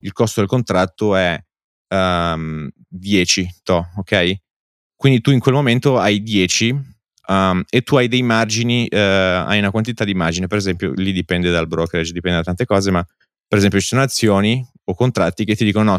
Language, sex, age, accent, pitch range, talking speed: Italian, male, 20-39, native, 90-110 Hz, 190 wpm